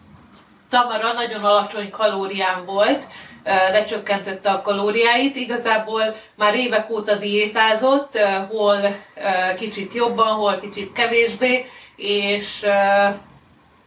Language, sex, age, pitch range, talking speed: Hungarian, female, 30-49, 200-225 Hz, 85 wpm